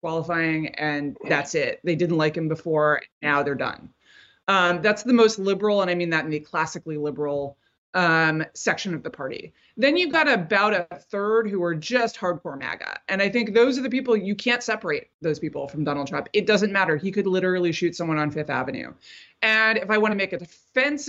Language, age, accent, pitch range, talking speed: English, 20-39, American, 170-240 Hz, 215 wpm